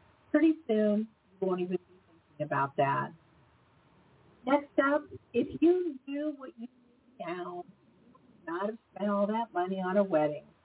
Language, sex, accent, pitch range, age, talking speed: English, female, American, 175-270 Hz, 50-69, 165 wpm